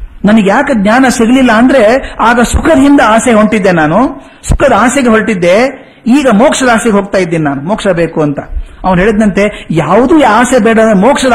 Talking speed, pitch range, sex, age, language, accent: 155 wpm, 180-235 Hz, male, 50-69, Kannada, native